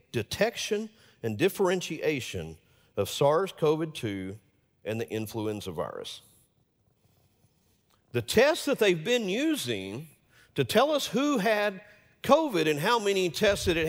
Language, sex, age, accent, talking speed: English, male, 50-69, American, 115 wpm